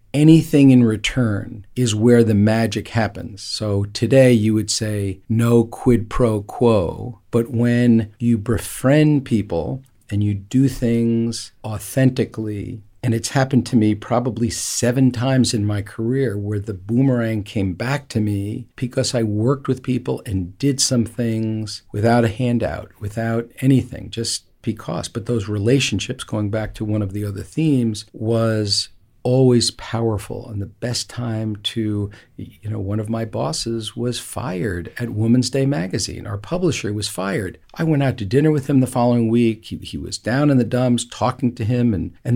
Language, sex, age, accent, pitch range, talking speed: English, male, 50-69, American, 105-125 Hz, 165 wpm